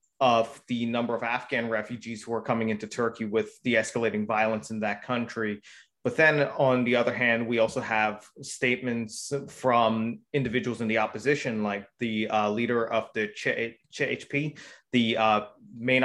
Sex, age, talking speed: male, 30-49, 160 wpm